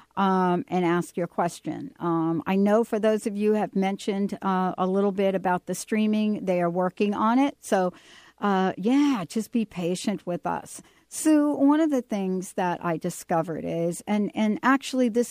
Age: 60-79